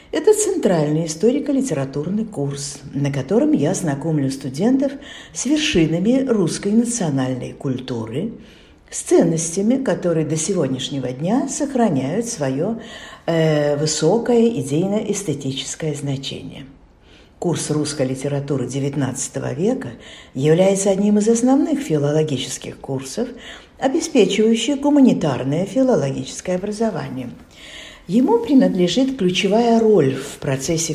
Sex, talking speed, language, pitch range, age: female, 90 wpm, Turkish, 145-230 Hz, 50-69